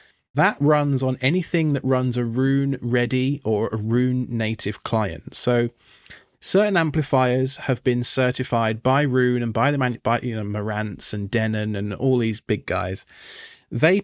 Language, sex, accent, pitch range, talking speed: English, male, British, 110-145 Hz, 150 wpm